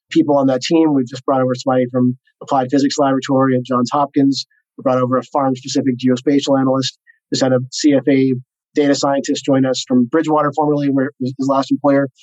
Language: English